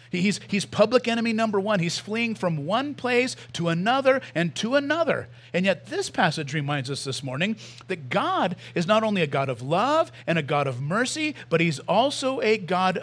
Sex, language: male, English